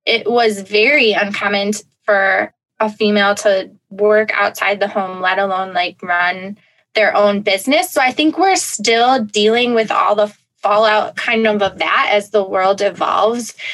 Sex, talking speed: female, 160 wpm